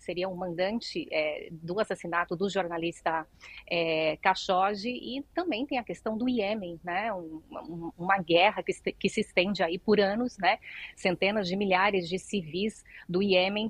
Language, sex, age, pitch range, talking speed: Portuguese, female, 30-49, 180-205 Hz, 150 wpm